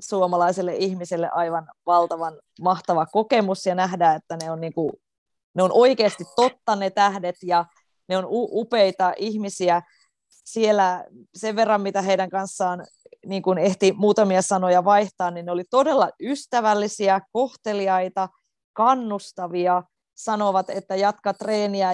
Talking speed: 125 wpm